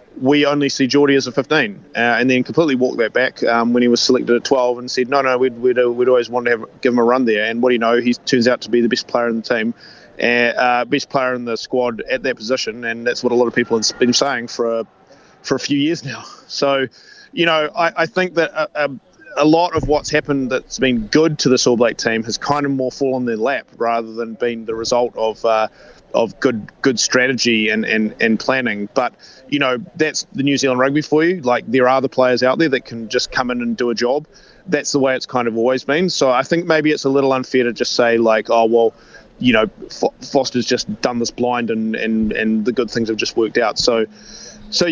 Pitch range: 120-145 Hz